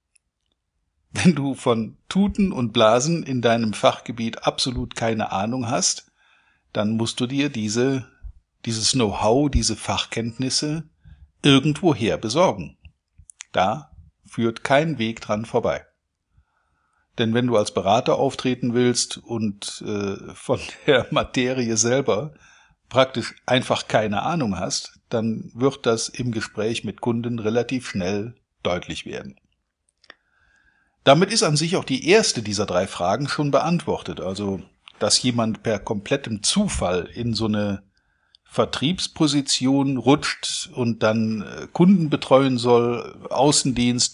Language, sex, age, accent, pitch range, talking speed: German, male, 50-69, German, 105-135 Hz, 120 wpm